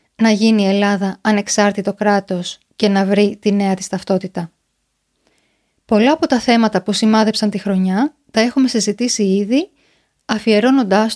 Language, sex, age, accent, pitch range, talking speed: Greek, female, 20-39, native, 200-255 Hz, 140 wpm